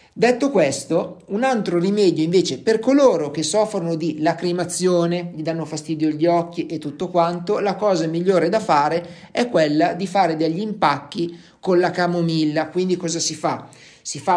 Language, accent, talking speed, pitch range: Italian, native, 165 wpm, 155-190 Hz